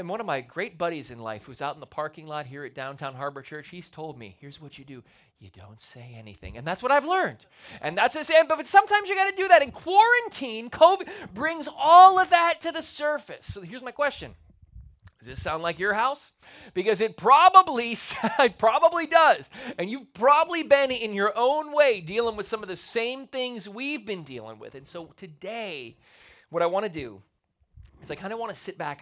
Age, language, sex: 30-49, English, male